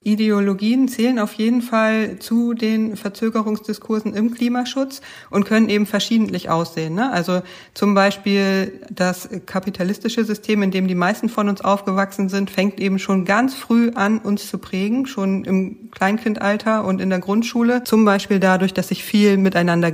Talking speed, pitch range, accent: 160 wpm, 180-220 Hz, German